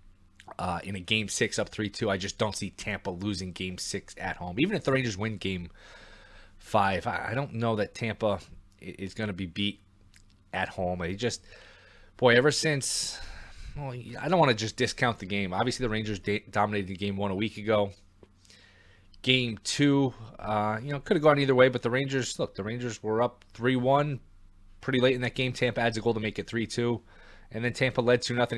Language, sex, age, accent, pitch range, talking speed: English, male, 20-39, American, 95-120 Hz, 210 wpm